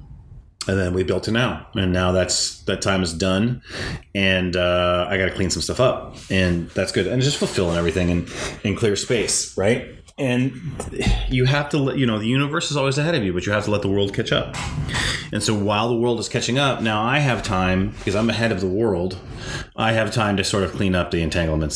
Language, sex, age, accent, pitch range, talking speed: English, male, 30-49, American, 85-105 Hz, 240 wpm